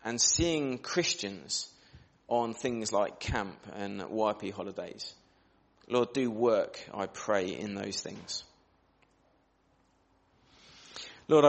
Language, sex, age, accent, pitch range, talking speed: English, male, 30-49, British, 110-140 Hz, 100 wpm